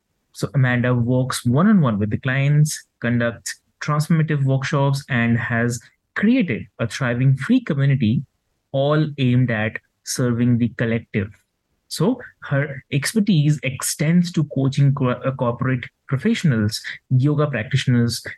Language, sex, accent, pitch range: English, male, Indian, 120-155 Hz